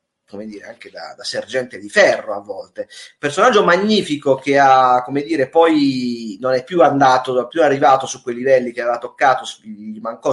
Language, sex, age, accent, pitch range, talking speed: Italian, male, 30-49, native, 125-150 Hz, 190 wpm